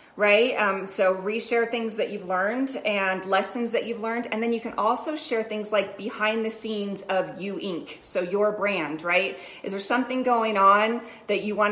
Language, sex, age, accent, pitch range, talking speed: English, female, 40-59, American, 195-235 Hz, 200 wpm